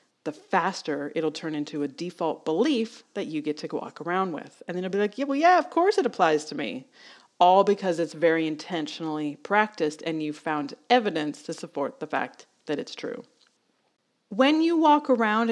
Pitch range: 165-220 Hz